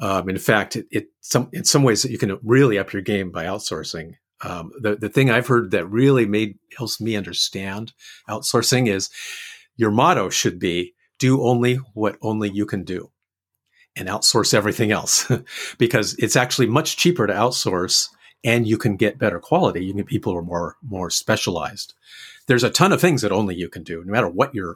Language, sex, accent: English, male, American